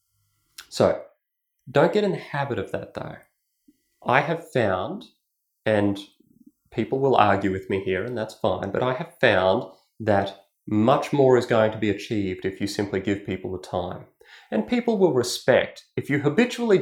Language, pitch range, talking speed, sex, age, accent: English, 100-145 Hz, 170 wpm, male, 30-49, Australian